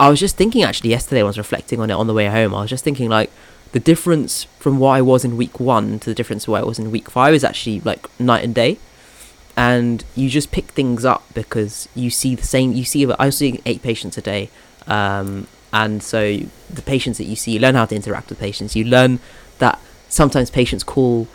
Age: 20-39